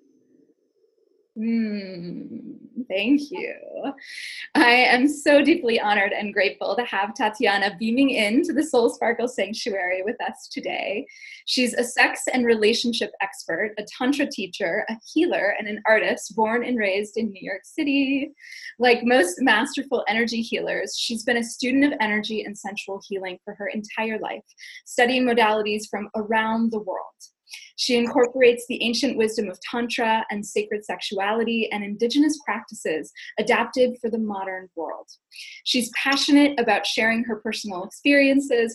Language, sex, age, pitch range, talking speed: English, female, 10-29, 210-275 Hz, 140 wpm